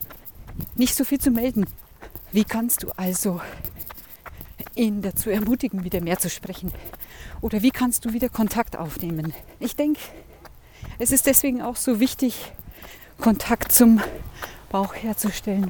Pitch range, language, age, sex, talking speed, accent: 195-250 Hz, German, 40-59, female, 135 wpm, German